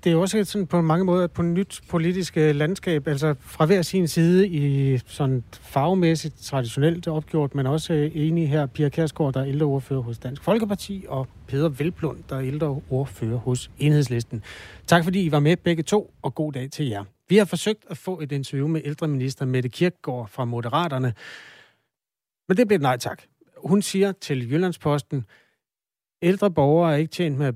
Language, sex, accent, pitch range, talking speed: Danish, male, native, 125-165 Hz, 185 wpm